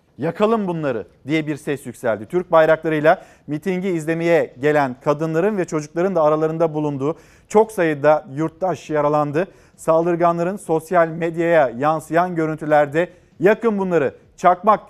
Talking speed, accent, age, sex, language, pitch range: 115 wpm, native, 40-59, male, Turkish, 120-170 Hz